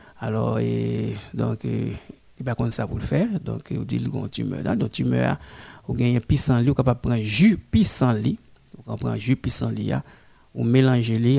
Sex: male